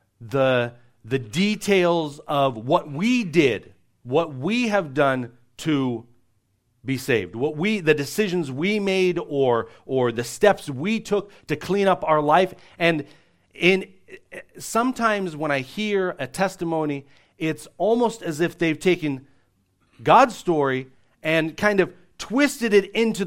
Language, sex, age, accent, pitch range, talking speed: English, male, 40-59, American, 115-180 Hz, 135 wpm